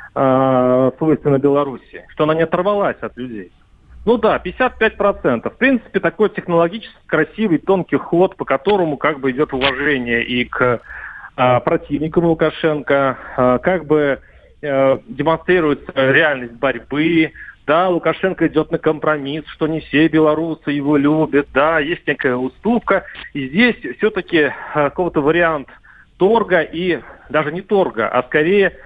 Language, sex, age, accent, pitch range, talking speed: Russian, male, 40-59, native, 135-185 Hz, 125 wpm